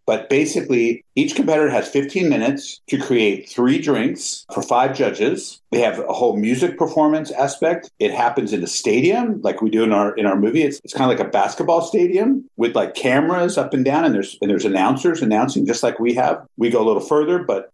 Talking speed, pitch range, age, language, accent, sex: 215 wpm, 115-180 Hz, 50-69, English, American, male